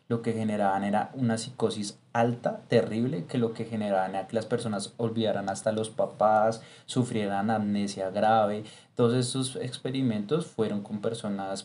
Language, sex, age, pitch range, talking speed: Spanish, male, 20-39, 100-120 Hz, 150 wpm